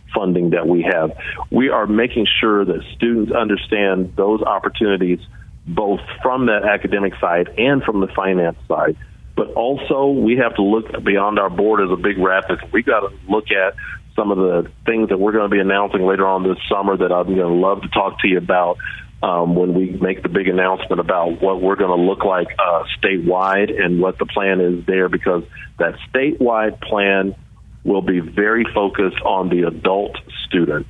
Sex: male